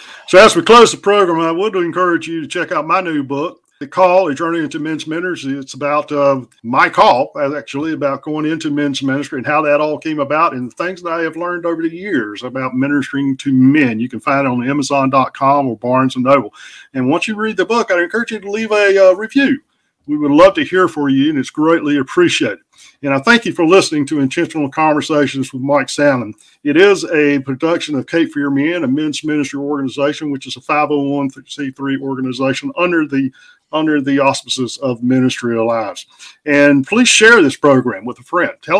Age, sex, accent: 50-69, male, American